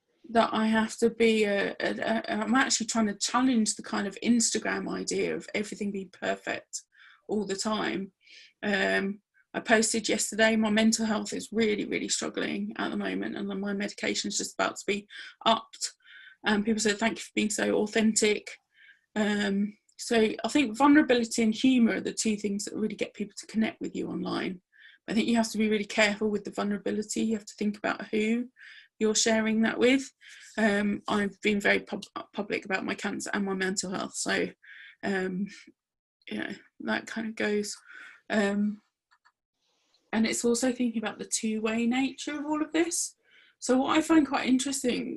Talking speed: 185 wpm